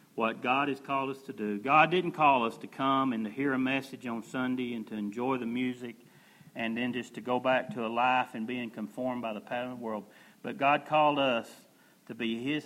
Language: English